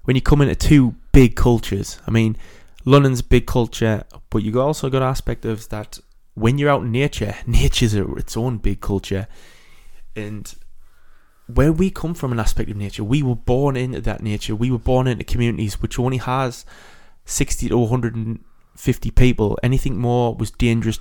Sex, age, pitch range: male, 20-39, 110-125 Hz